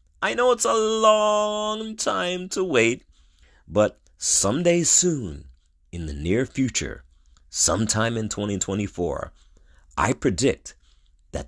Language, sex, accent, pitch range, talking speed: English, male, American, 85-135 Hz, 110 wpm